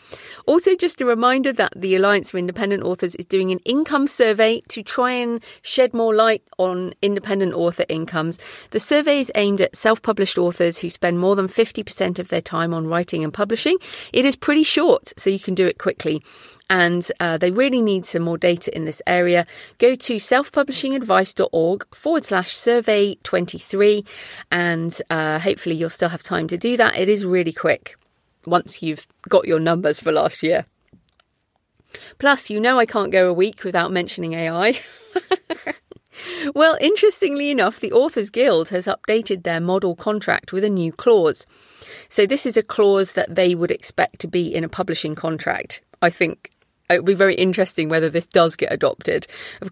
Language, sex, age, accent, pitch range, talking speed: English, female, 40-59, British, 175-245 Hz, 180 wpm